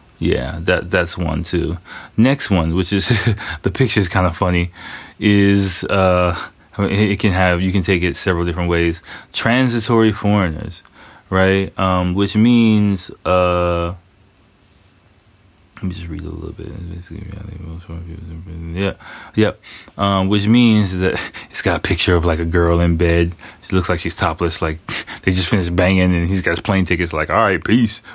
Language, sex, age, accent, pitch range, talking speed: English, male, 20-39, American, 85-100 Hz, 165 wpm